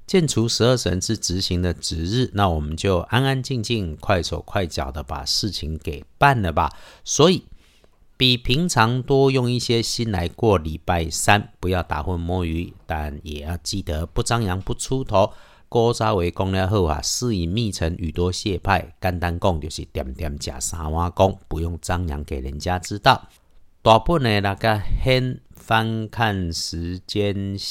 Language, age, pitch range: Chinese, 50-69, 85-115 Hz